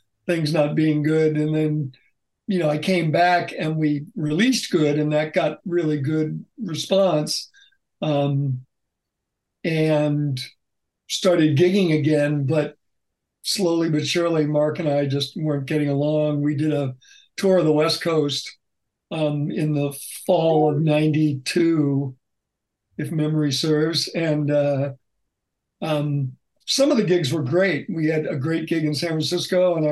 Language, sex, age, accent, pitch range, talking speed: English, male, 60-79, American, 145-170 Hz, 145 wpm